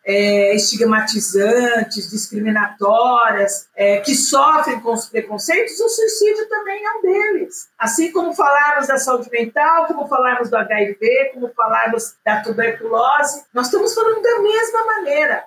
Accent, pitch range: Brazilian, 220-315 Hz